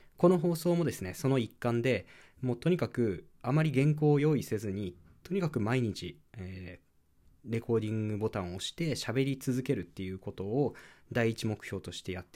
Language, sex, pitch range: Japanese, male, 95-135 Hz